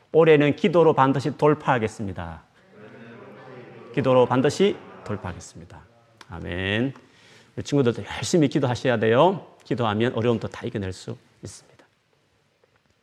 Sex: male